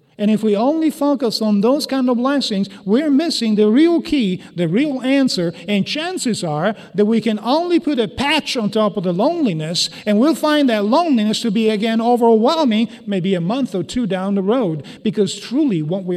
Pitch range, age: 150-220 Hz, 50-69